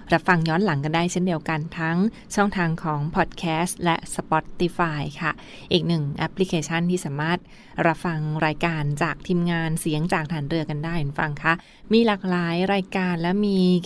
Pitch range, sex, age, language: 160-190 Hz, female, 20-39, Thai